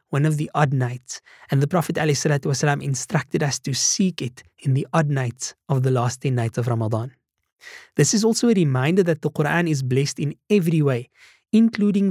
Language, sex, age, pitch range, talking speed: English, male, 20-39, 130-160 Hz, 195 wpm